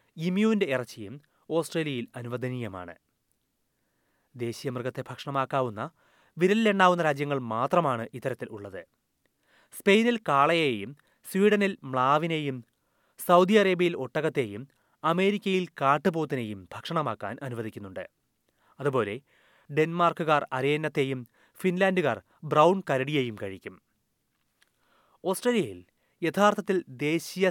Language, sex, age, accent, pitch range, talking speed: Malayalam, male, 30-49, native, 125-175 Hz, 70 wpm